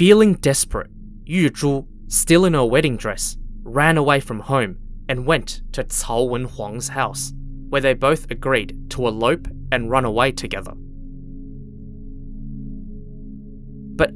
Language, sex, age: English, male, 20-39